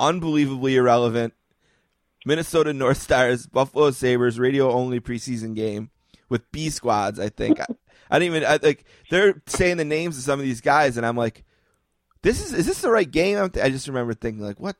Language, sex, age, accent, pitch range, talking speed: English, male, 30-49, American, 110-140 Hz, 200 wpm